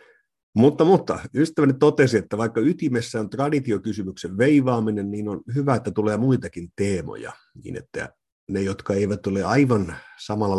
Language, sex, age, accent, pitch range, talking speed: Finnish, male, 50-69, native, 95-130 Hz, 140 wpm